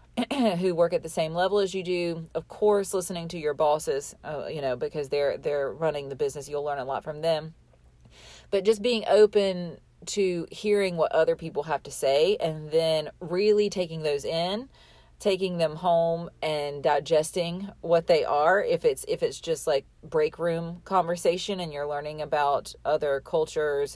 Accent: American